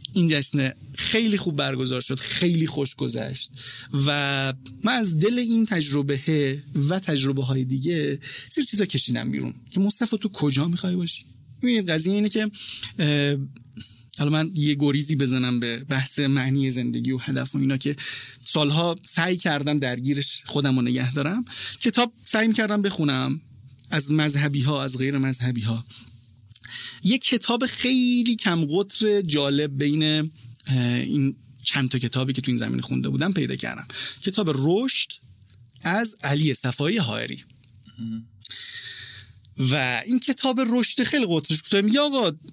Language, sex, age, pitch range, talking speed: Persian, male, 30-49, 130-195 Hz, 140 wpm